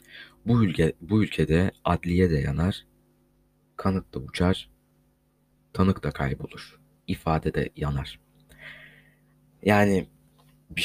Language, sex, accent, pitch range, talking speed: Turkish, male, native, 75-90 Hz, 100 wpm